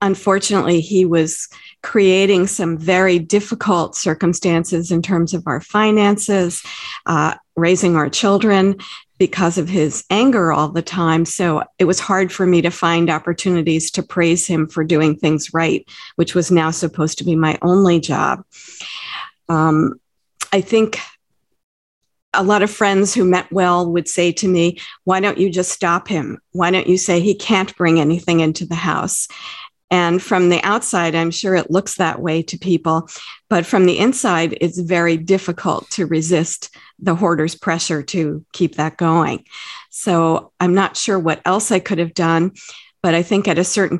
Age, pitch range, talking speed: 50-69, 165-190 Hz, 170 wpm